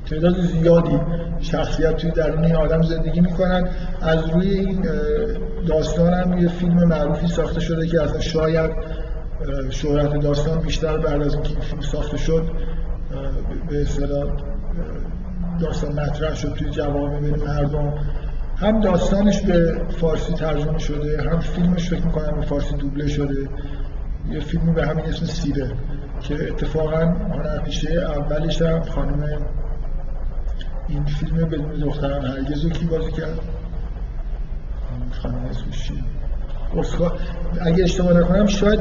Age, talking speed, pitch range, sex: 50-69, 120 wpm, 145-170 Hz, male